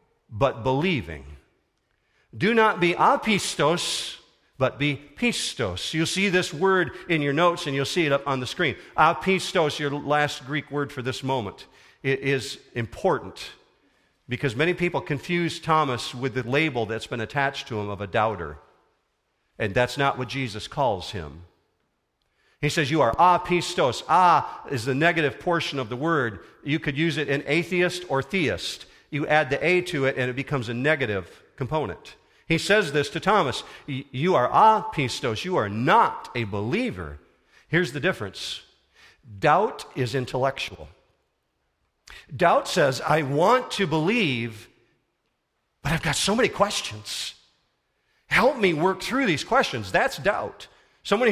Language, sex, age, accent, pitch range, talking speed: English, male, 50-69, American, 125-170 Hz, 155 wpm